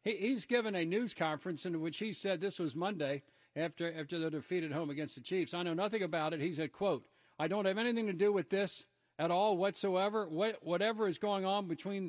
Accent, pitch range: American, 170-215 Hz